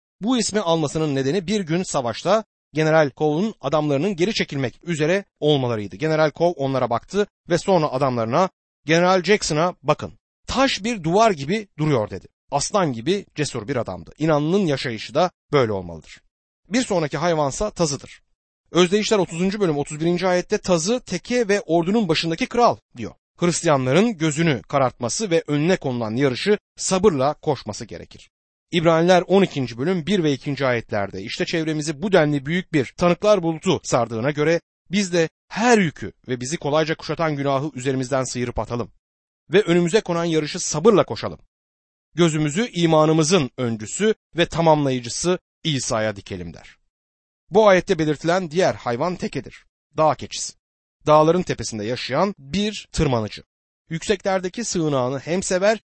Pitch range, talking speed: 125-185 Hz, 135 wpm